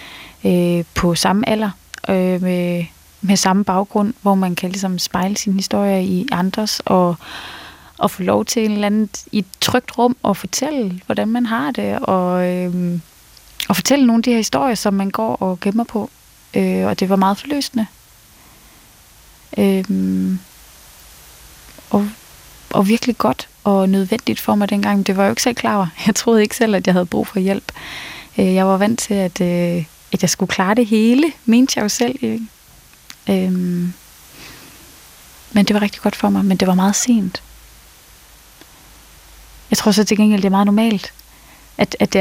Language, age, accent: Danish, 20-39, native